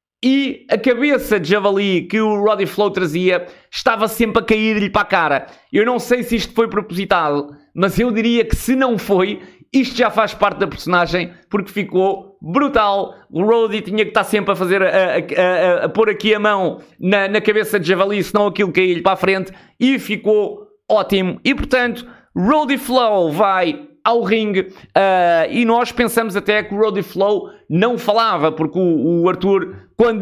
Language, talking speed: Portuguese, 185 wpm